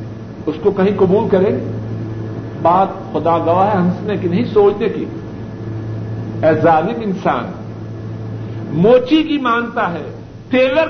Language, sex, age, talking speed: Urdu, male, 60-79, 120 wpm